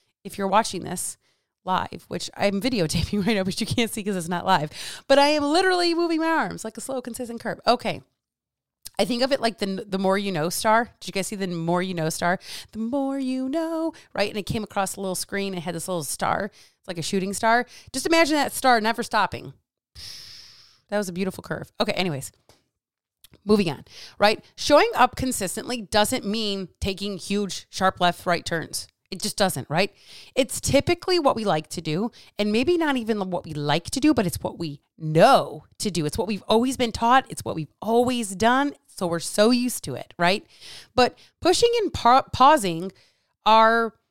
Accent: American